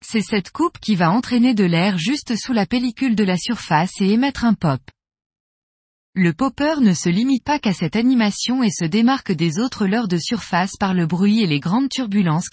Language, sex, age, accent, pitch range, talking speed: French, female, 20-39, French, 180-245 Hz, 205 wpm